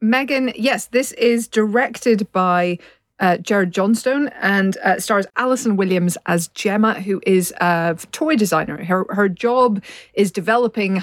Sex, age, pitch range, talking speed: female, 40-59, 175-220 Hz, 140 wpm